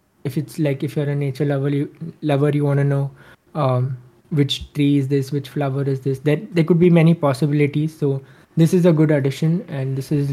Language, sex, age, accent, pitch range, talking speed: English, male, 20-39, Indian, 140-155 Hz, 210 wpm